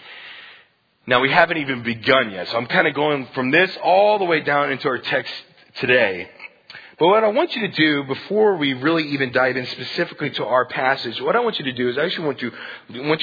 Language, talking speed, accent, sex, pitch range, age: English, 225 wpm, American, male, 145-190 Hz, 40-59